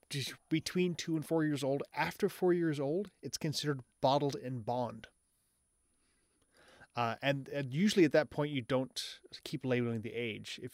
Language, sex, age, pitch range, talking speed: English, male, 30-49, 115-150 Hz, 170 wpm